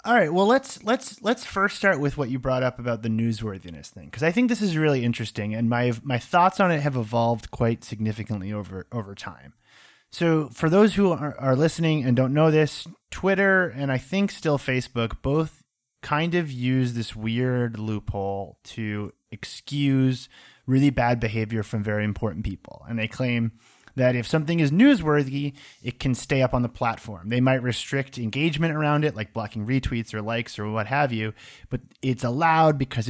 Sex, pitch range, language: male, 115-155 Hz, English